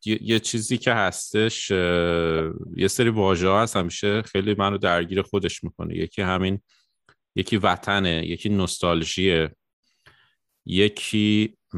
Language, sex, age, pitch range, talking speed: Persian, male, 30-49, 85-100 Hz, 105 wpm